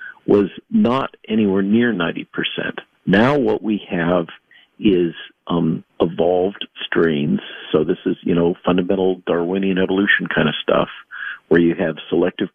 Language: English